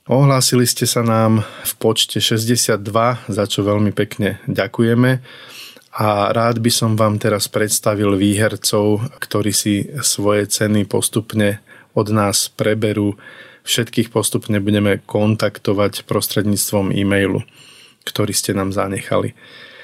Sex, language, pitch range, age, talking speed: male, Slovak, 105-120 Hz, 20-39, 115 wpm